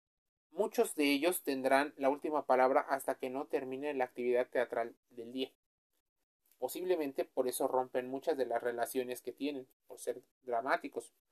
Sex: male